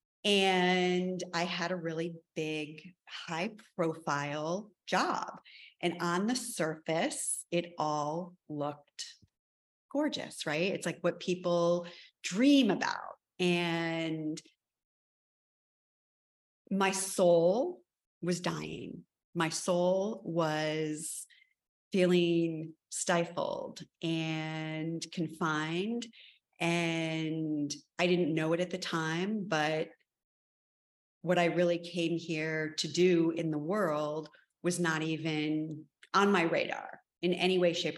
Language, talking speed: English, 105 wpm